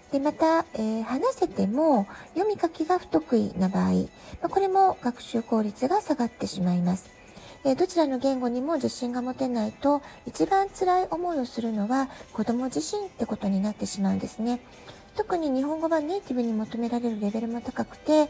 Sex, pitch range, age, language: female, 220-330 Hz, 40-59, Japanese